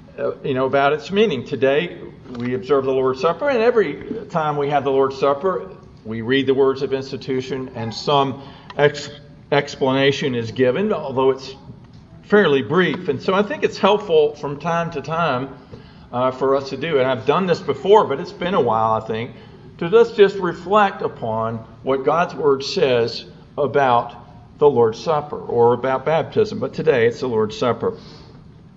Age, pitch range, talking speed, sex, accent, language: 50-69, 135-185 Hz, 170 wpm, male, American, English